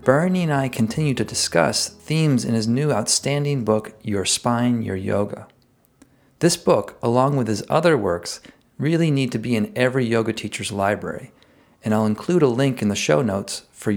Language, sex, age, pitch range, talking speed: English, male, 40-59, 110-140 Hz, 180 wpm